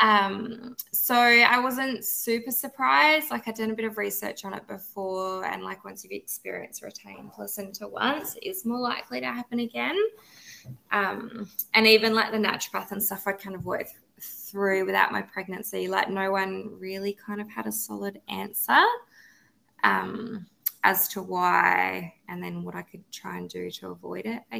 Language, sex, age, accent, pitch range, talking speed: English, female, 20-39, Australian, 195-230 Hz, 175 wpm